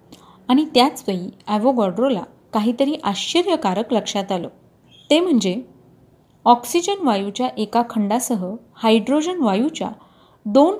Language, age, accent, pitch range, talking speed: Marathi, 30-49, native, 210-270 Hz, 90 wpm